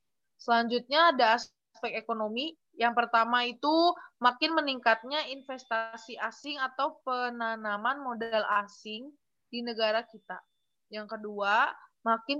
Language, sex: Indonesian, female